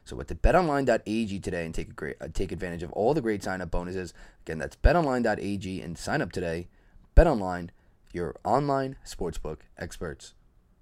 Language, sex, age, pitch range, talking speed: English, male, 20-39, 100-125 Hz, 160 wpm